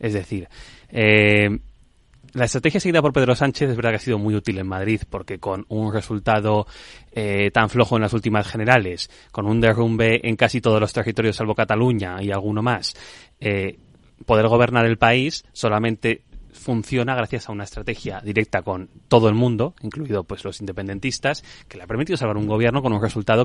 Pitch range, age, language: 105-120 Hz, 20-39, Spanish